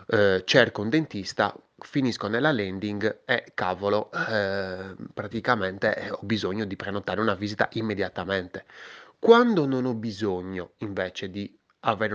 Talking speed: 125 wpm